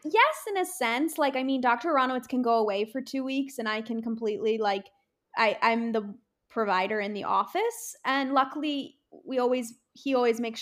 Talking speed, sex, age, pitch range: 190 wpm, female, 20-39, 230-295 Hz